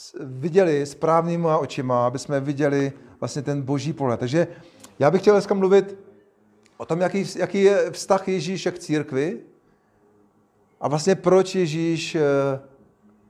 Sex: male